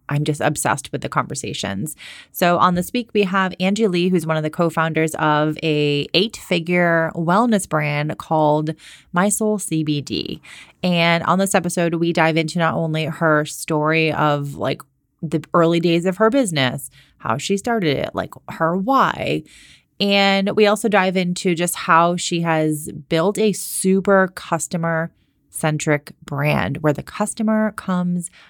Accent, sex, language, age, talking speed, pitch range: American, female, English, 30-49, 155 wpm, 150-185 Hz